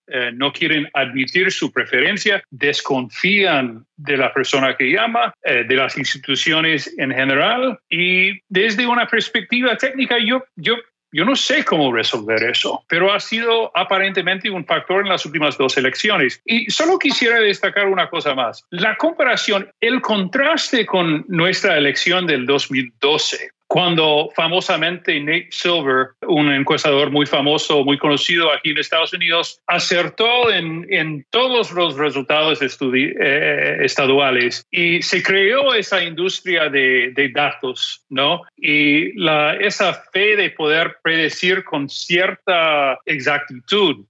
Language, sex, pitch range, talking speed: Spanish, male, 150-205 Hz, 135 wpm